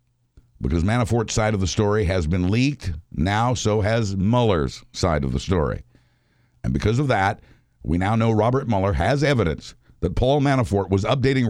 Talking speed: 170 wpm